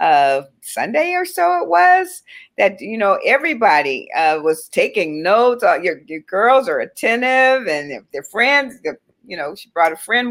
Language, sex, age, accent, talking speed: English, female, 50-69, American, 175 wpm